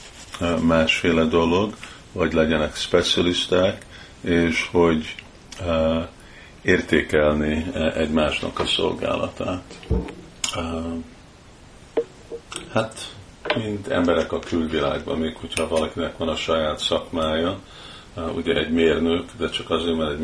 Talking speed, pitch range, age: 90 wpm, 80-85 Hz, 50-69